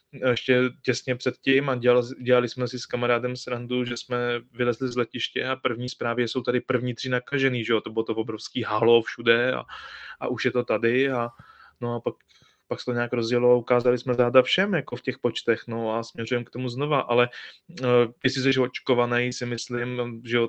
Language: Czech